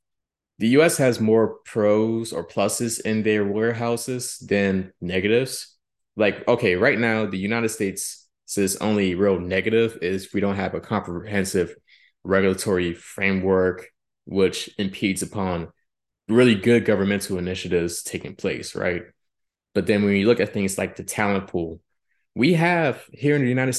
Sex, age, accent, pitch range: male, 20-39, American, 95-115 Hz